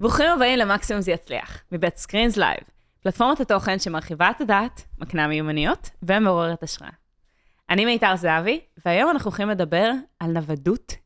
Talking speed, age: 135 wpm, 20-39